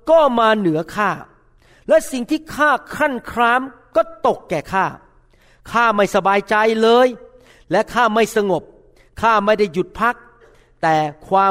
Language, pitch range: Thai, 135-230 Hz